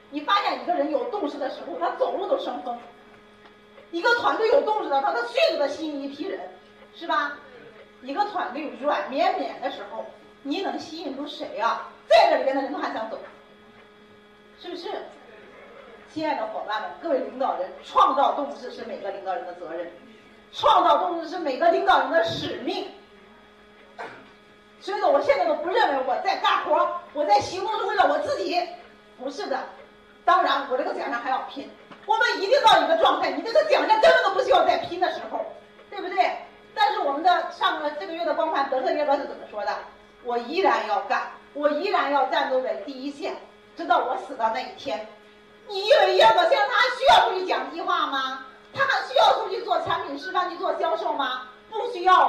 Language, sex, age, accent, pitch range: Chinese, female, 40-59, native, 270-370 Hz